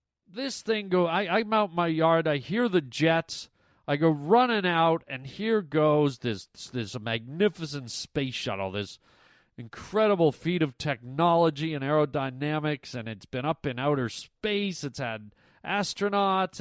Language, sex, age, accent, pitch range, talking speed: English, male, 40-59, American, 145-200 Hz, 150 wpm